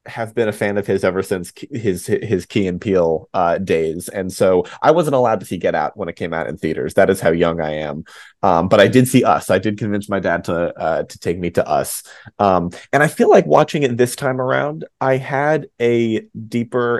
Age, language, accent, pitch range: 30-49, English, American, 95-115 Hz